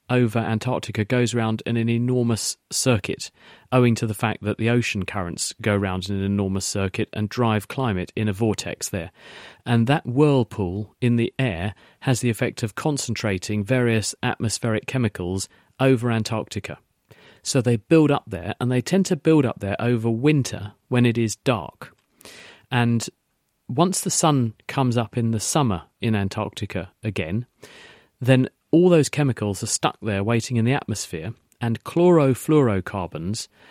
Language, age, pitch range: English, 40-59, 105-125 Hz